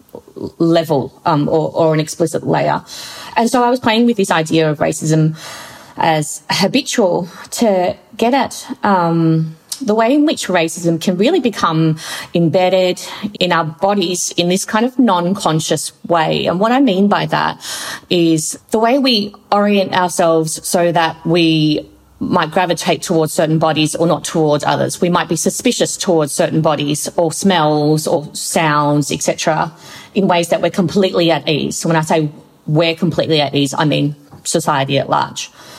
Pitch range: 160-195 Hz